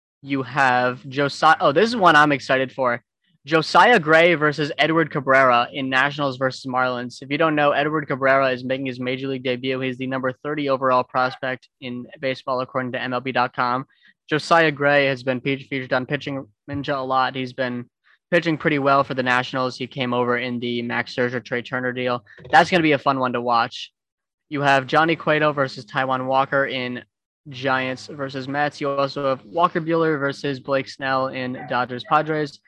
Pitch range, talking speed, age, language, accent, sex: 125-145 Hz, 185 wpm, 10-29, English, American, male